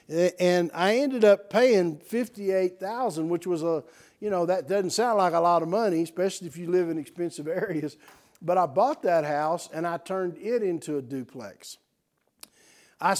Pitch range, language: 145-175 Hz, English